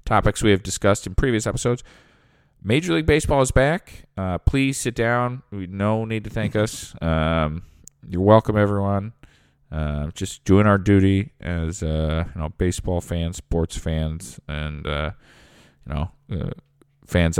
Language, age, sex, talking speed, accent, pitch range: English, 40-59, male, 155 wpm, American, 80-110 Hz